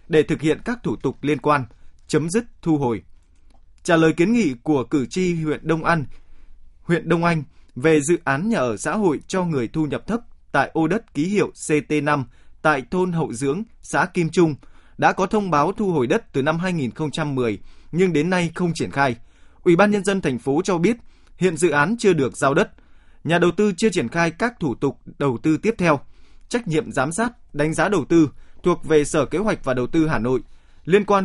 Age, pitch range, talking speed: 20-39, 140-185 Hz, 220 wpm